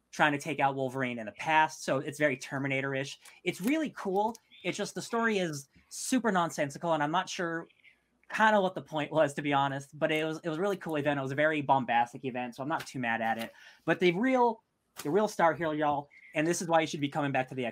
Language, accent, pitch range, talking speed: English, American, 135-170 Hz, 255 wpm